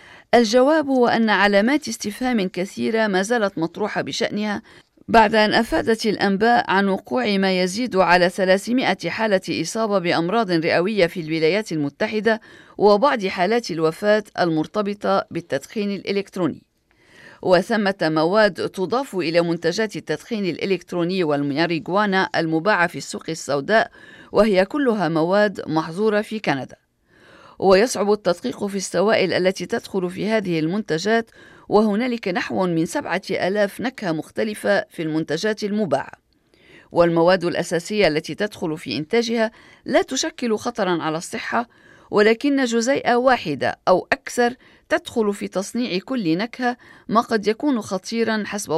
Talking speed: 120 wpm